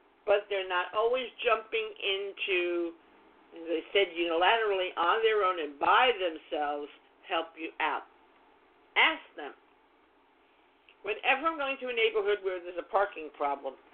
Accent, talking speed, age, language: American, 140 wpm, 50-69, English